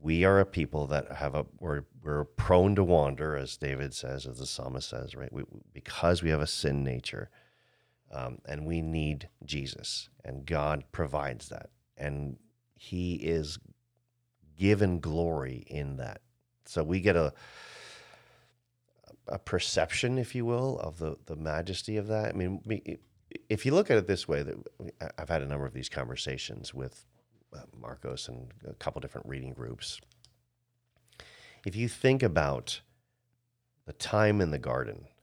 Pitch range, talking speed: 70-105 Hz, 160 wpm